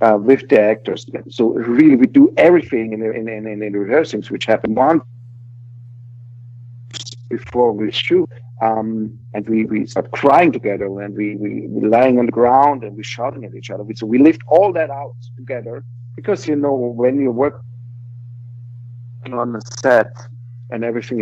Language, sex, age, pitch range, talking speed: English, male, 50-69, 115-125 Hz, 165 wpm